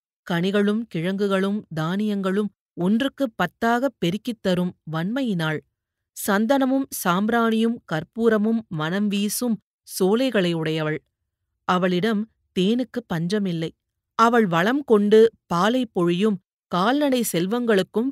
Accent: native